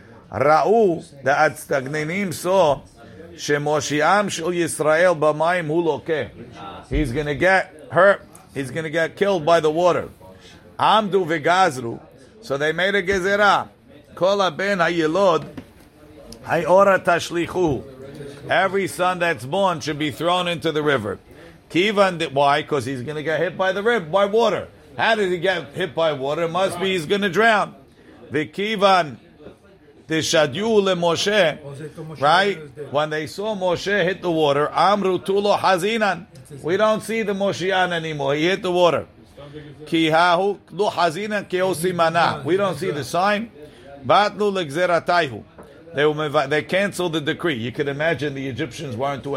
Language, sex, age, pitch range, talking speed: English, male, 50-69, 150-190 Hz, 110 wpm